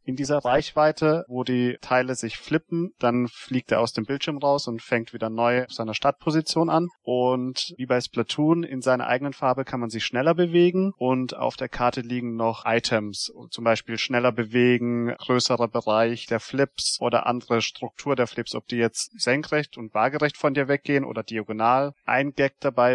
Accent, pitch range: German, 115-140 Hz